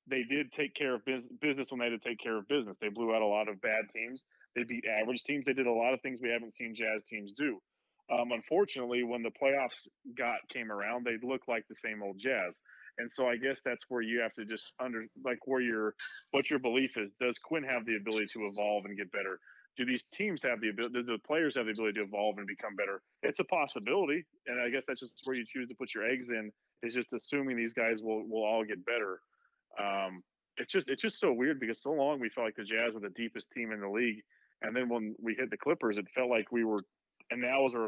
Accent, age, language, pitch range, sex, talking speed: American, 30-49, English, 105-125 Hz, male, 260 wpm